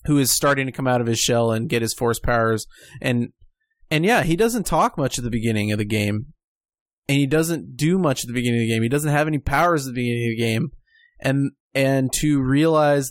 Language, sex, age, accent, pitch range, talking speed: English, male, 20-39, American, 120-150 Hz, 245 wpm